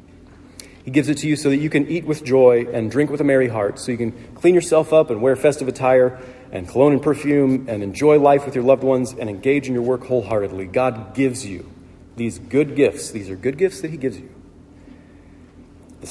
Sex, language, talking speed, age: male, English, 225 wpm, 40-59